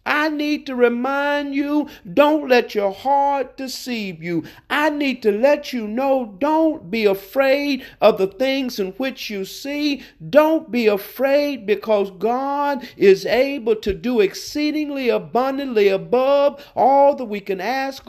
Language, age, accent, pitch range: English, 50-69, American, 190-275 Hz